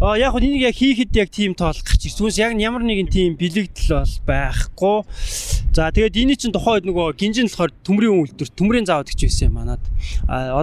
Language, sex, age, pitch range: Korean, male, 20-39, 125-200 Hz